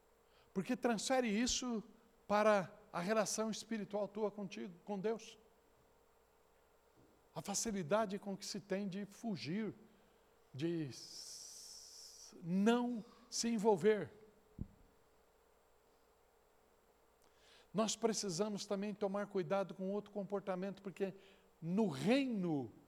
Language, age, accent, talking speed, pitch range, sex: Portuguese, 60-79, Brazilian, 90 wpm, 195-235 Hz, male